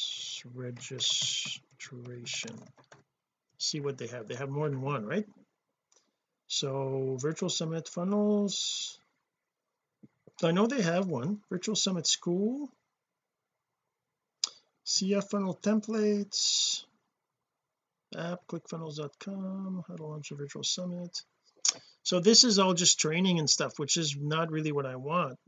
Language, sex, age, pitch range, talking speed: English, male, 50-69, 140-190 Hz, 115 wpm